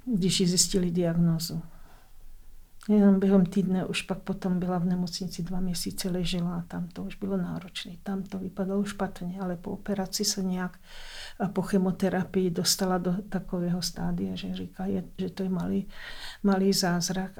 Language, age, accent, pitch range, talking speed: Czech, 50-69, native, 180-195 Hz, 155 wpm